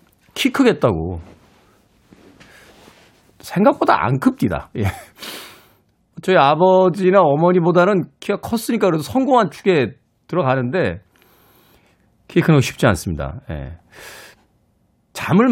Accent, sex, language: native, male, Korean